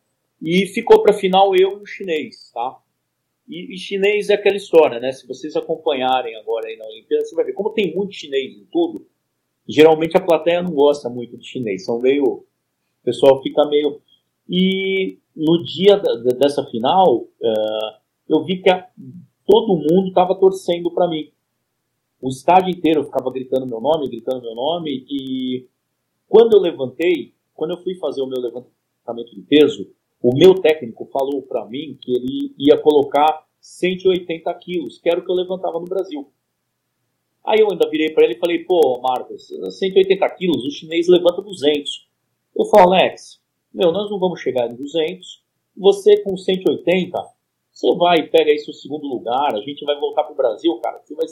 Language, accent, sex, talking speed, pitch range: Portuguese, Brazilian, male, 180 wpm, 140-205 Hz